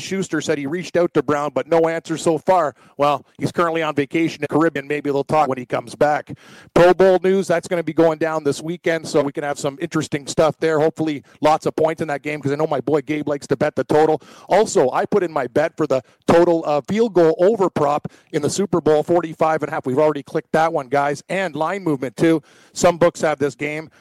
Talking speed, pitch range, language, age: 245 wpm, 145-165 Hz, English, 40-59